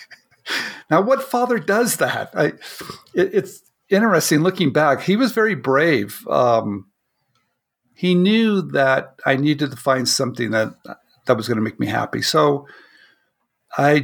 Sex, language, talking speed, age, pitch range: male, English, 135 wpm, 50-69, 130-175 Hz